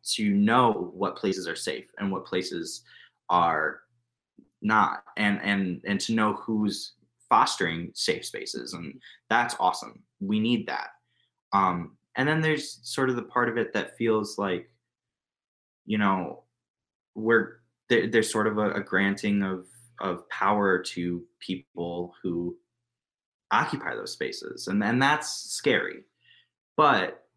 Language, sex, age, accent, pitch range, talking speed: English, male, 20-39, American, 95-125 Hz, 140 wpm